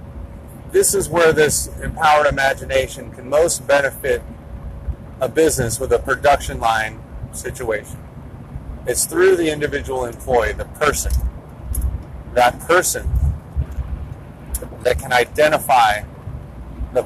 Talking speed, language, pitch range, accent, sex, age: 100 wpm, English, 110-155 Hz, American, male, 40-59